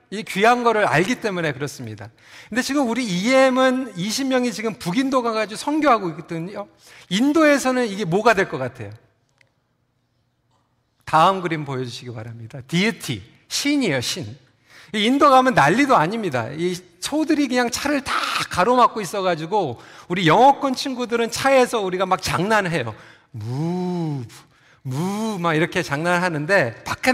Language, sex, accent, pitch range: Korean, male, native, 155-255 Hz